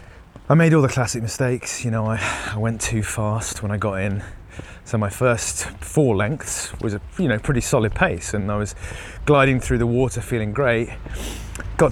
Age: 30-49